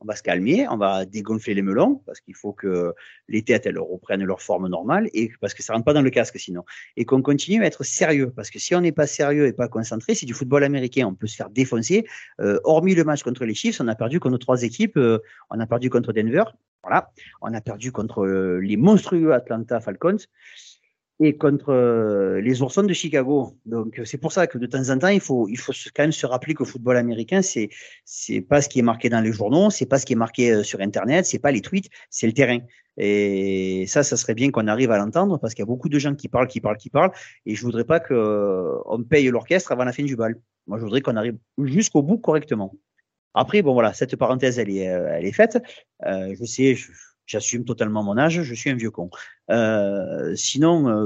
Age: 40-59